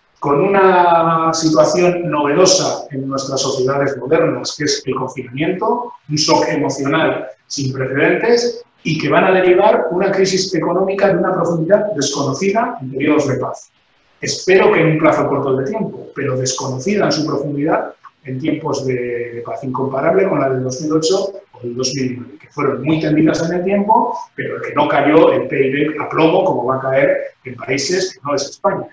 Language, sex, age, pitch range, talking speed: Spanish, male, 30-49, 140-180 Hz, 170 wpm